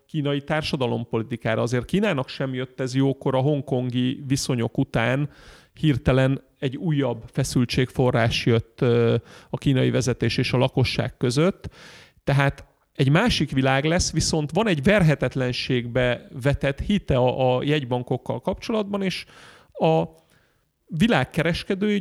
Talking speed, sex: 110 wpm, male